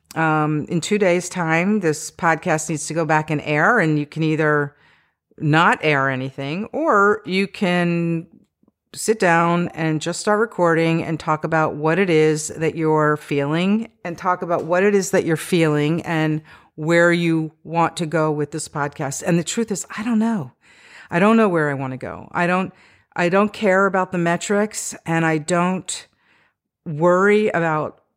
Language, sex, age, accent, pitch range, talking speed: English, female, 50-69, American, 155-180 Hz, 175 wpm